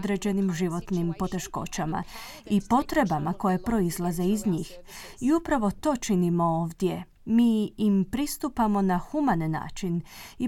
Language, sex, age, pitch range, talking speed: Croatian, female, 30-49, 185-245 Hz, 120 wpm